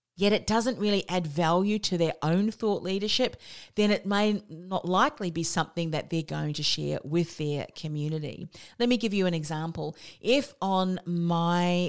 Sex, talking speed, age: female, 175 wpm, 40-59